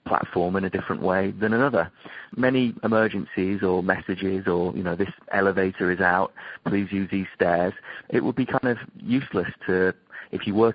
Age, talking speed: 30-49, 180 wpm